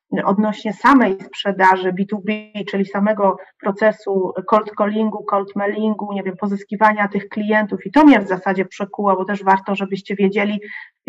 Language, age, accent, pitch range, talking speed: Polish, 30-49, native, 205-235 Hz, 150 wpm